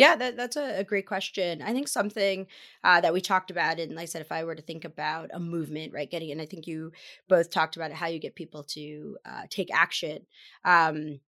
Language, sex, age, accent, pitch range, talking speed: English, female, 20-39, American, 170-205 Hz, 240 wpm